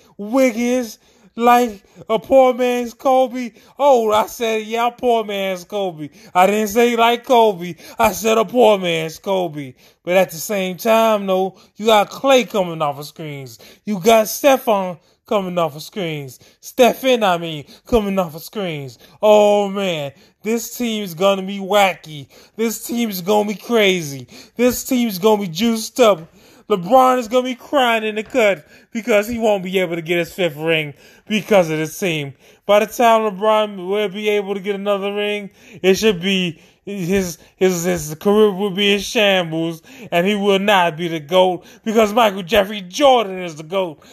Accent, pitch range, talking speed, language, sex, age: American, 185-240 Hz, 175 wpm, English, male, 20-39